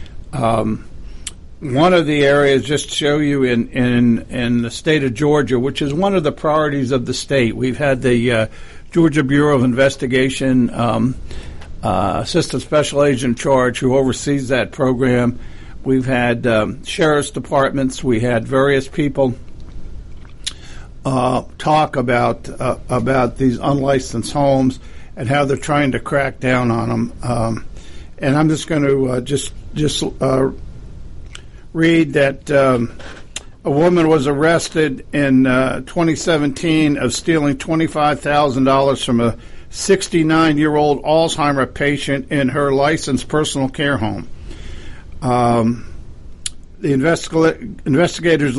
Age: 60-79